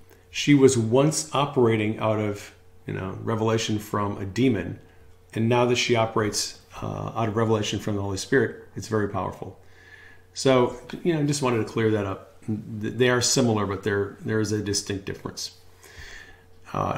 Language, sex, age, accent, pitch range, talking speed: English, male, 40-59, American, 100-130 Hz, 170 wpm